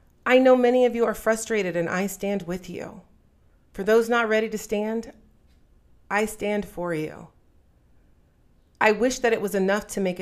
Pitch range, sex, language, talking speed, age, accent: 175-225 Hz, female, English, 175 wpm, 40-59, American